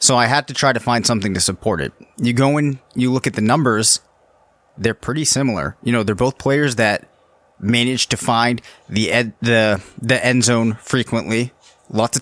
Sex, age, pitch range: male, 30-49, 115-135 Hz